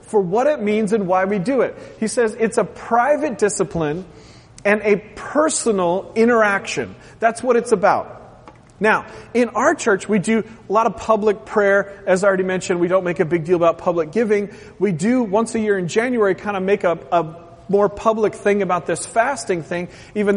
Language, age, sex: English, 30-49, male